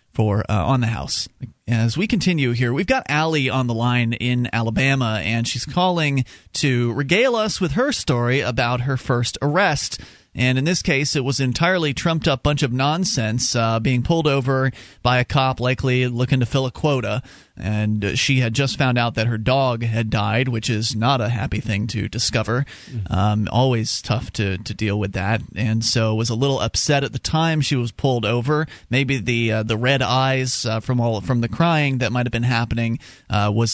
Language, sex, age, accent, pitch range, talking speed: English, male, 30-49, American, 120-165 Hz, 205 wpm